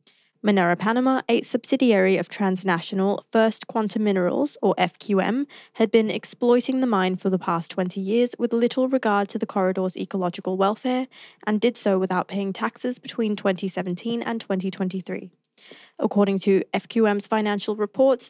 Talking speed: 145 wpm